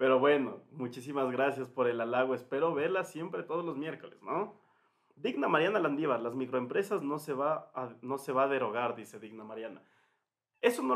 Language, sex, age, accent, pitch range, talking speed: Spanish, male, 30-49, Mexican, 125-160 Hz, 180 wpm